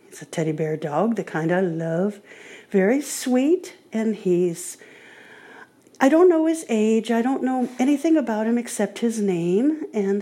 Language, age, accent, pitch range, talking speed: English, 50-69, American, 170-240 Hz, 165 wpm